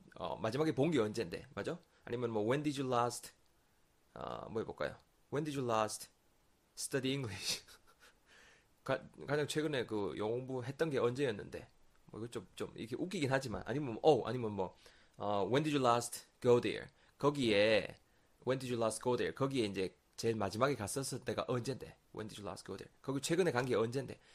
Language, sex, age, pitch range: Korean, male, 20-39, 105-135 Hz